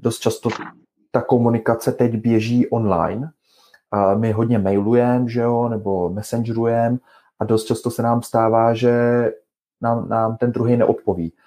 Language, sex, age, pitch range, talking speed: Czech, male, 30-49, 105-115 Hz, 130 wpm